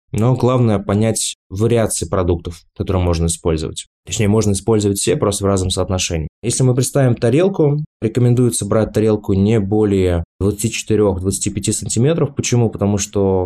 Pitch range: 95-115 Hz